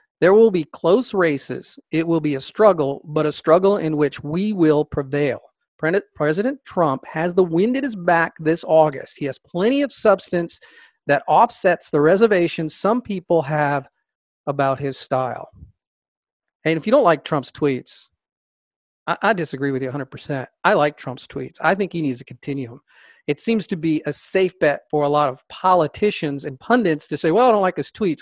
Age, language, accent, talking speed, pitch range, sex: 40-59, English, American, 190 wpm, 145-190 Hz, male